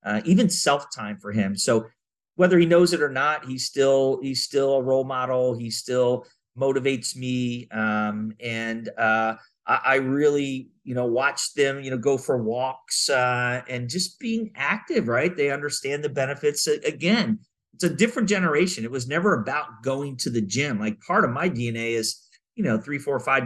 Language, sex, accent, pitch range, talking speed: English, male, American, 115-145 Hz, 185 wpm